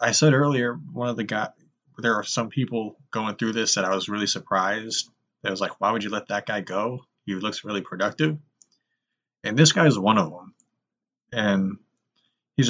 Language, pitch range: English, 100-120 Hz